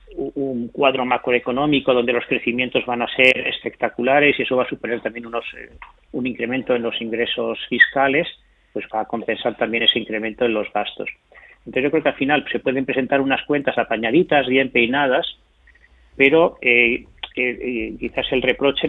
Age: 30-49